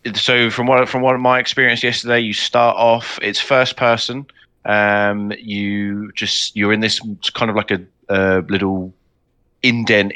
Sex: male